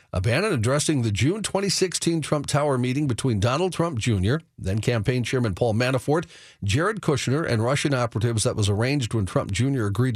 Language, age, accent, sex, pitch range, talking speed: English, 50-69, American, male, 115-145 Hz, 175 wpm